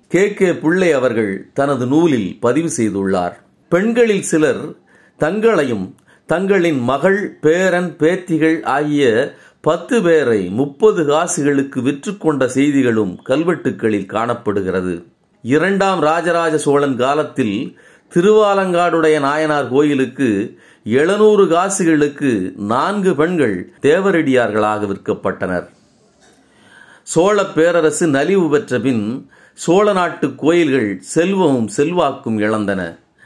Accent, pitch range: native, 120-185 Hz